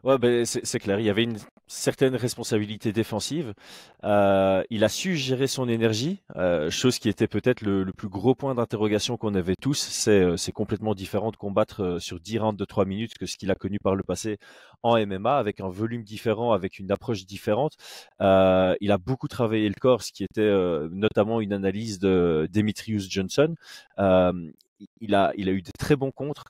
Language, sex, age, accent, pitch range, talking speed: French, male, 20-39, French, 100-125 Hz, 210 wpm